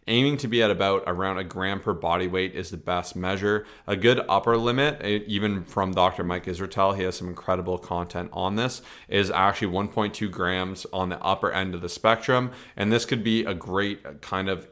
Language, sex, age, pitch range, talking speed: English, male, 30-49, 90-110 Hz, 205 wpm